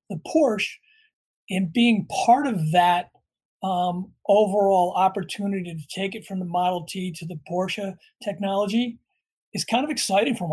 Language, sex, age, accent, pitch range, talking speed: English, male, 40-59, American, 175-200 Hz, 150 wpm